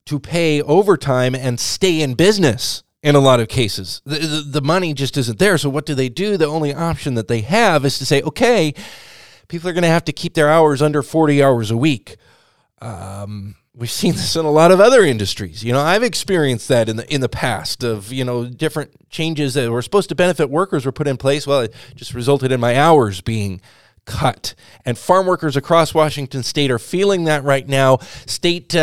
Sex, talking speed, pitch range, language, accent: male, 215 wpm, 120-160 Hz, English, American